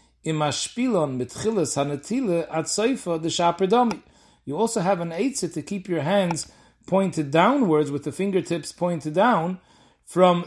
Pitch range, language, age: 135-185 Hz, English, 40-59